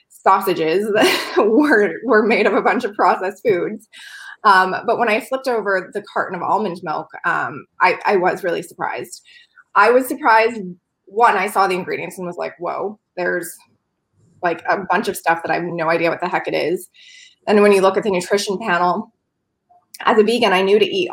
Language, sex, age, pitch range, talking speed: English, female, 20-39, 175-240 Hz, 200 wpm